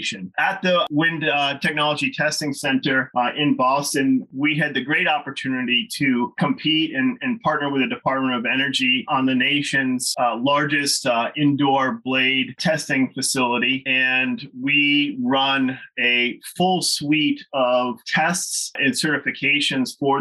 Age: 30-49